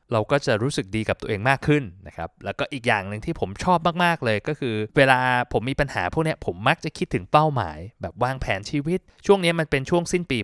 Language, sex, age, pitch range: Thai, male, 20-39, 110-145 Hz